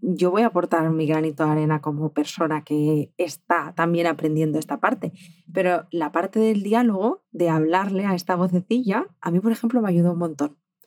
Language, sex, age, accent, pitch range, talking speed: Spanish, female, 20-39, Spanish, 165-190 Hz, 190 wpm